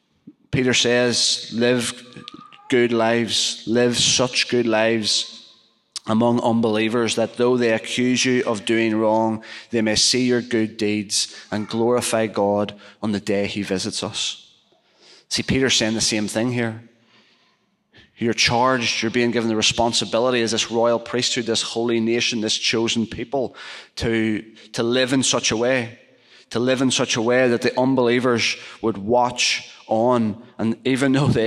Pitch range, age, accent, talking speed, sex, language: 110-120 Hz, 30-49, British, 155 wpm, male, English